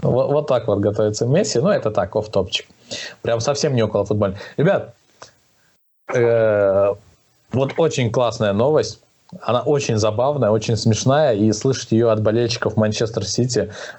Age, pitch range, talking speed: 20-39, 110-150 Hz, 140 wpm